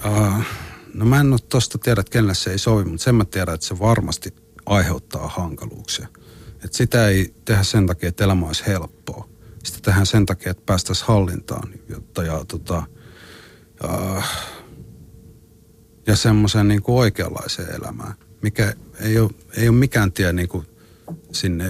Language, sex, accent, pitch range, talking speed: Finnish, male, native, 90-110 Hz, 155 wpm